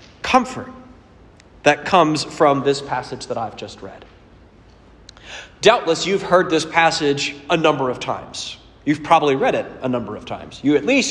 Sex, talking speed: male, 160 wpm